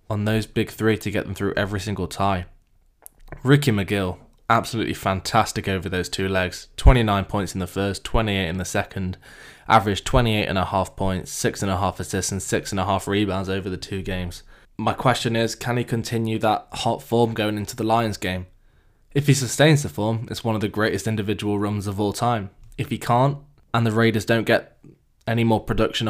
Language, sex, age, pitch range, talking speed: English, male, 10-29, 95-115 Hz, 185 wpm